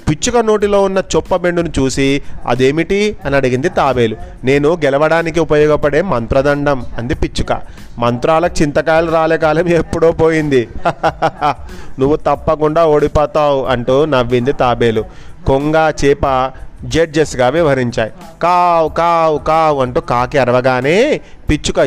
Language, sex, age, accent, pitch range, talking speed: Telugu, male, 30-49, native, 130-165 Hz, 100 wpm